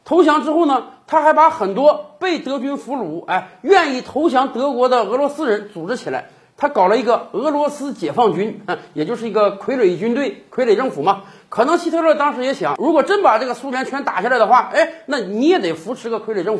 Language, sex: Chinese, male